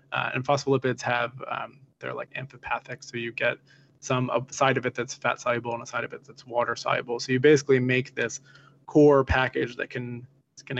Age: 20-39